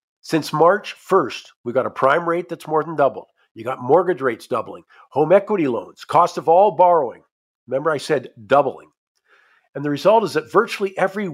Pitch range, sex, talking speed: 130-170 Hz, male, 185 wpm